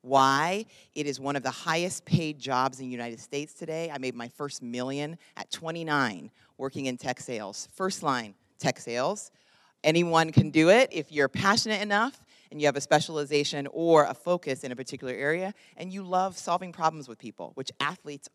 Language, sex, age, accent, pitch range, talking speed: English, female, 30-49, American, 130-170 Hz, 190 wpm